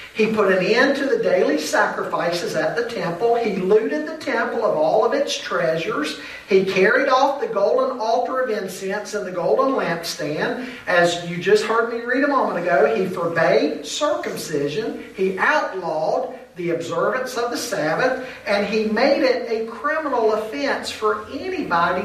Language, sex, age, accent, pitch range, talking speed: English, male, 50-69, American, 170-240 Hz, 165 wpm